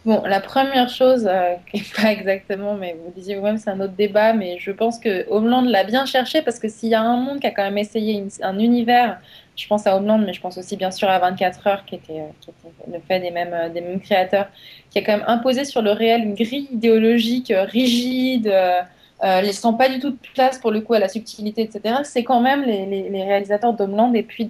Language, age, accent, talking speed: French, 20-39, French, 245 wpm